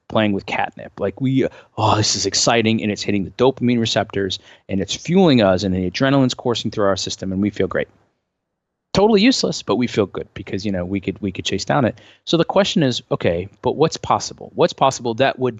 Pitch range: 105-150 Hz